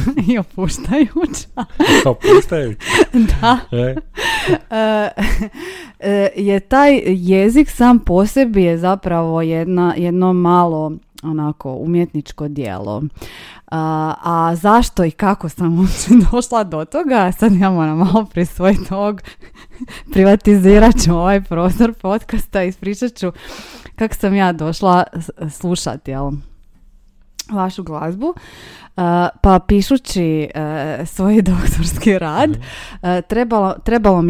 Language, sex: Croatian, female